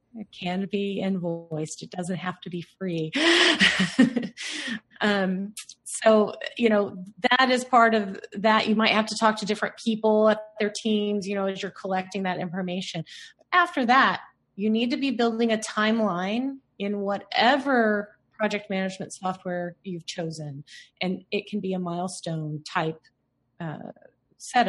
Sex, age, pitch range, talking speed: female, 30-49, 175-220 Hz, 150 wpm